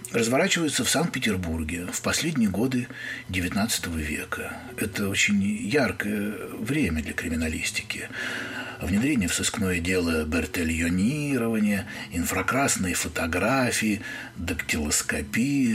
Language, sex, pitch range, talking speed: Russian, male, 95-135 Hz, 85 wpm